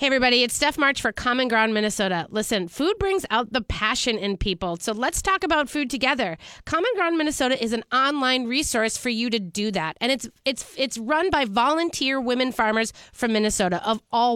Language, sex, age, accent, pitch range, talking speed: English, female, 30-49, American, 215-275 Hz, 200 wpm